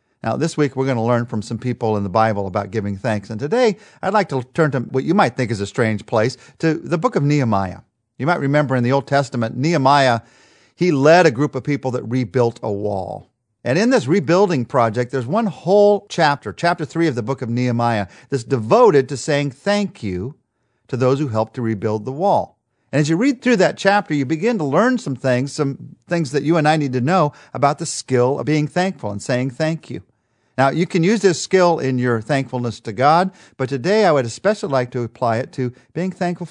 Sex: male